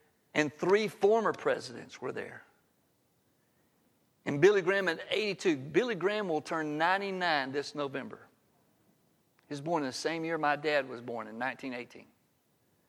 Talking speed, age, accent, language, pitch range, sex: 145 wpm, 50-69, American, English, 140-185 Hz, male